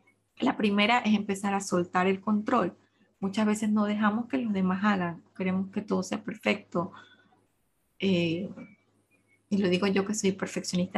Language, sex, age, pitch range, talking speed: Spanish, female, 20-39, 185-220 Hz, 160 wpm